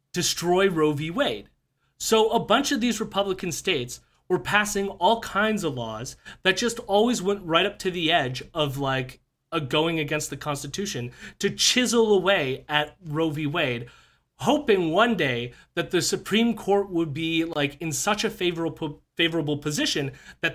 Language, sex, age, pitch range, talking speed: English, male, 30-49, 150-210 Hz, 165 wpm